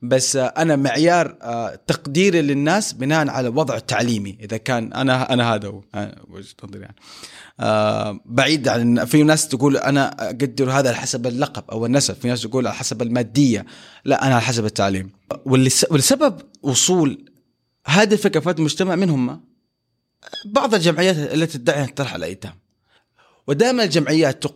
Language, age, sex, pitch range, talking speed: Arabic, 30-49, male, 130-180 Hz, 135 wpm